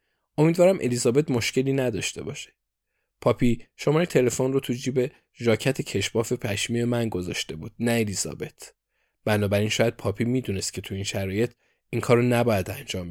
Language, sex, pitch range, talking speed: Persian, male, 105-130 Hz, 140 wpm